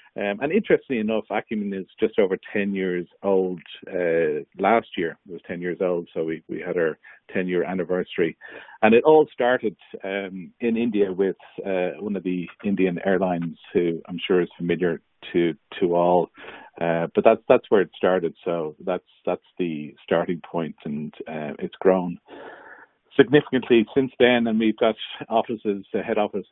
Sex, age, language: male, 50-69, English